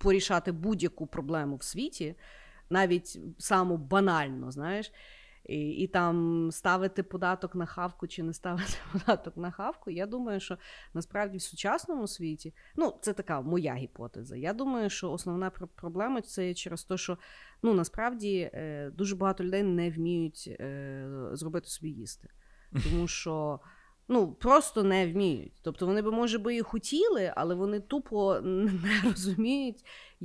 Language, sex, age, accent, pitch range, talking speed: Ukrainian, female, 30-49, native, 170-215 Hz, 145 wpm